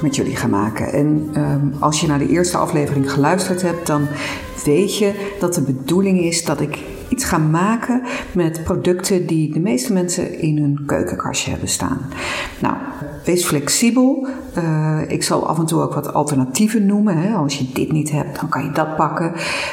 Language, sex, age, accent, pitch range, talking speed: Dutch, female, 50-69, Dutch, 150-215 Hz, 180 wpm